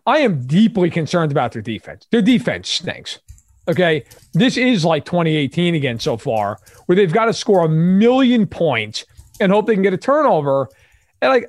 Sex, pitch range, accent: male, 150-205 Hz, American